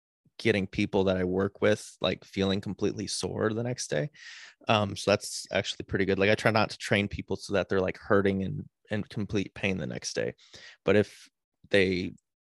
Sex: male